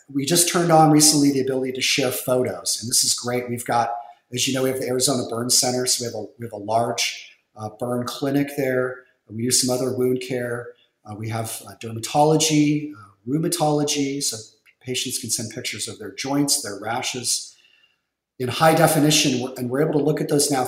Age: 40-59